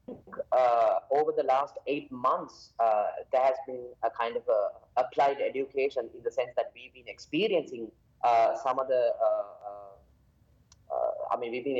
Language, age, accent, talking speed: English, 20-39, Indian, 170 wpm